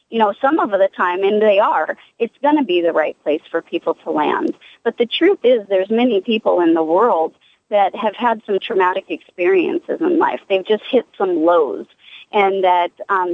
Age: 40-59